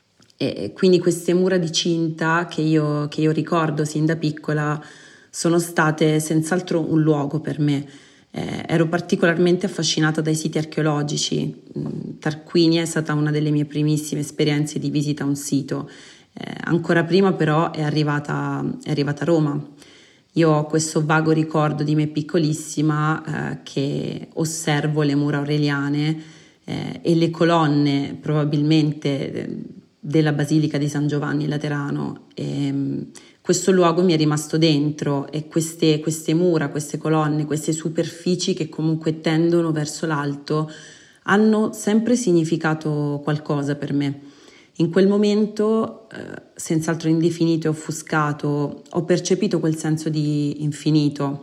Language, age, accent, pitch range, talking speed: Italian, 30-49, native, 145-165 Hz, 130 wpm